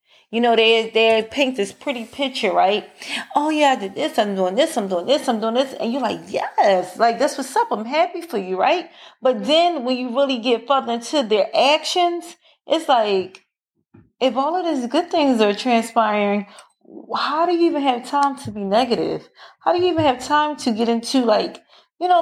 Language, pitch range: English, 225-300 Hz